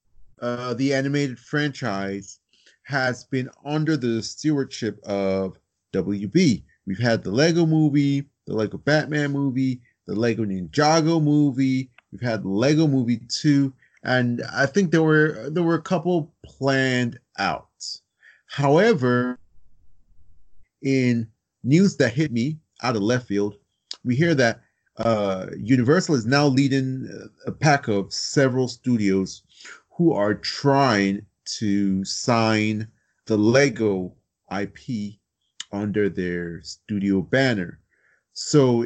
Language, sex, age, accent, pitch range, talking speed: English, male, 30-49, American, 100-140 Hz, 115 wpm